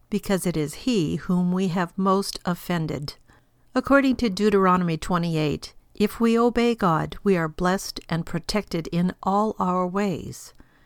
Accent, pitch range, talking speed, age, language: American, 165-205 Hz, 145 wpm, 50-69, English